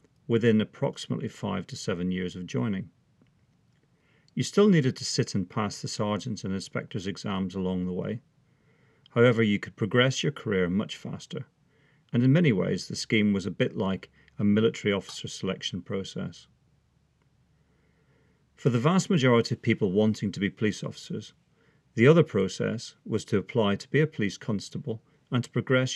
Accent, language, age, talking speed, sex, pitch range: British, English, 40-59, 165 wpm, male, 100-145 Hz